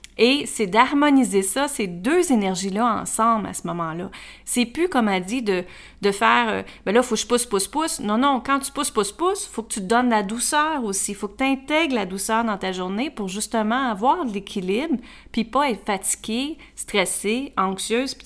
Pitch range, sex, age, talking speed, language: 195-250 Hz, female, 30-49, 225 wpm, French